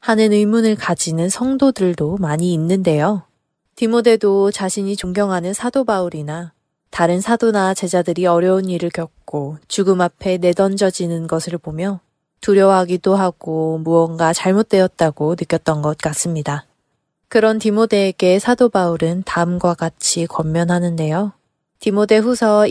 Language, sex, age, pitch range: Korean, female, 20-39, 165-205 Hz